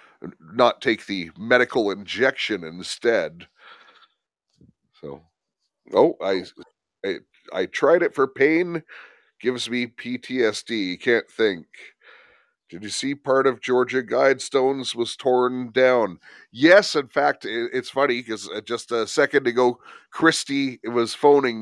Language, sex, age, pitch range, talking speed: English, male, 30-49, 105-130 Hz, 120 wpm